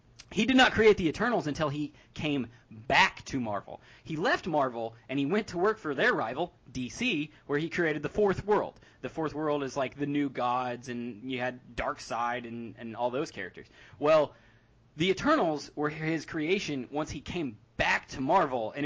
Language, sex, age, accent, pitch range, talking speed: English, male, 20-39, American, 130-185 Hz, 190 wpm